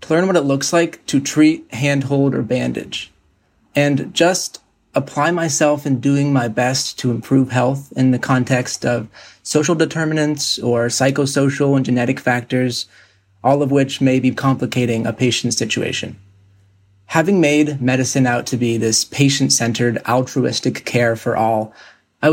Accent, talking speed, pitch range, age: American, 150 wpm, 115-140 Hz, 20-39